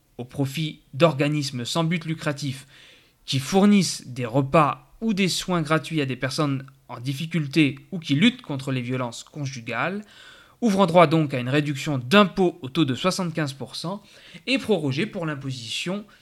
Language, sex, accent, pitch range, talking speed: French, male, French, 135-185 Hz, 150 wpm